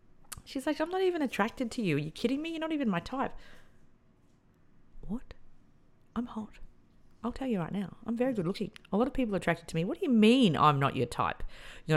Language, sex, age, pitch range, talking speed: English, female, 40-59, 150-230 Hz, 230 wpm